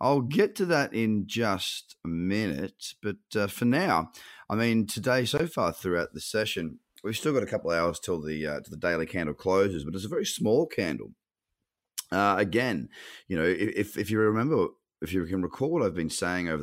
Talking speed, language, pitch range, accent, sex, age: 210 wpm, English, 85-105 Hz, Australian, male, 30-49